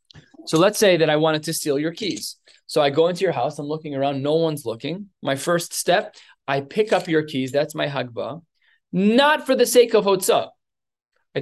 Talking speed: 210 wpm